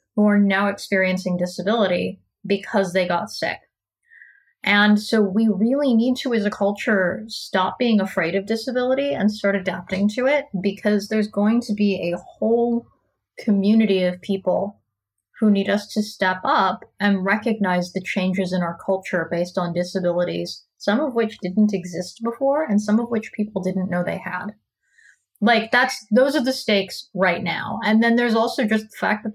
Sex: female